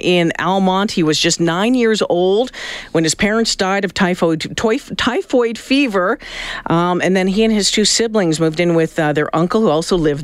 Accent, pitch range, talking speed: American, 165-225 Hz, 200 wpm